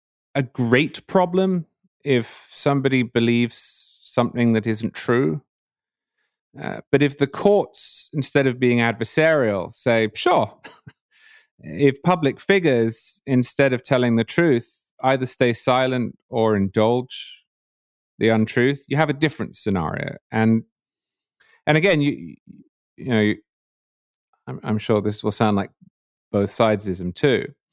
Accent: British